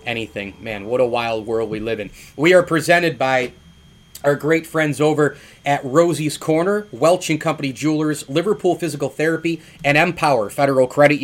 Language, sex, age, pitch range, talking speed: English, male, 30-49, 130-165 Hz, 165 wpm